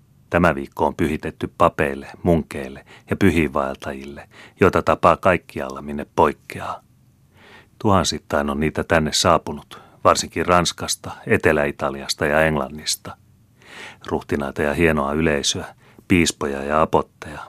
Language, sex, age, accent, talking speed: Finnish, male, 30-49, native, 105 wpm